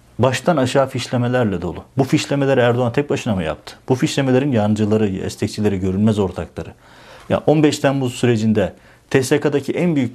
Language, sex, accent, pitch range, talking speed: Turkish, male, native, 110-145 Hz, 140 wpm